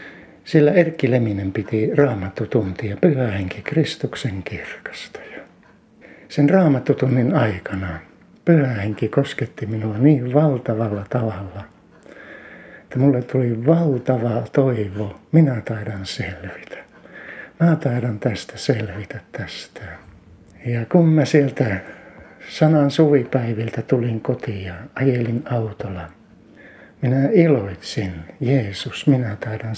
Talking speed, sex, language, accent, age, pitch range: 95 wpm, male, Finnish, native, 60-79, 110-145 Hz